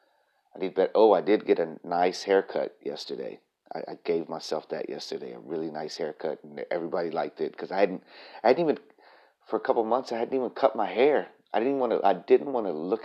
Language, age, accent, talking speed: English, 30-49, American, 210 wpm